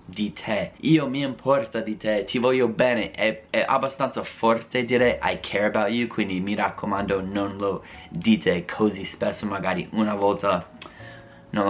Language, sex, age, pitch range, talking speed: Italian, male, 20-39, 105-120 Hz, 160 wpm